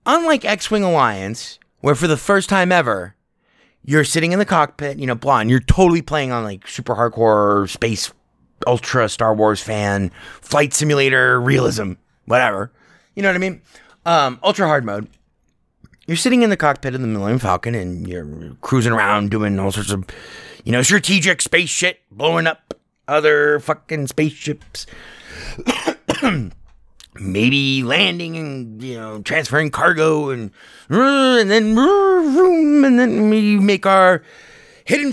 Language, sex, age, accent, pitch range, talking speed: English, male, 30-49, American, 120-195 Hz, 145 wpm